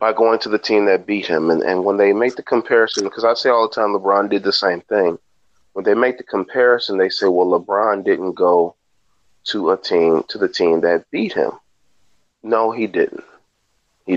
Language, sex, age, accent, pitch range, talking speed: English, male, 30-49, American, 100-130 Hz, 210 wpm